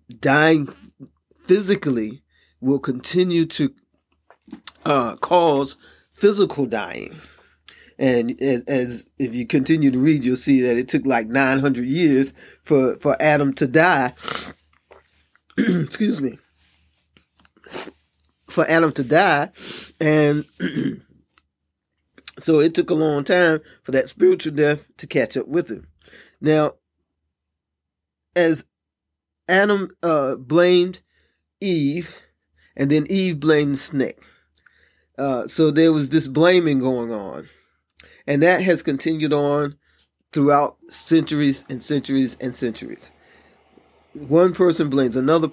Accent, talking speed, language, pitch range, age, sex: American, 115 wpm, English, 130-160 Hz, 20-39, male